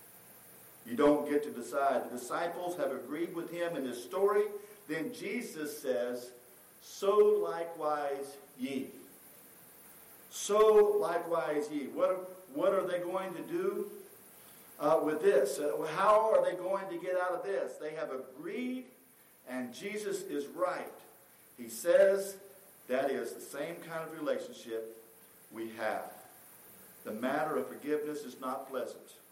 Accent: American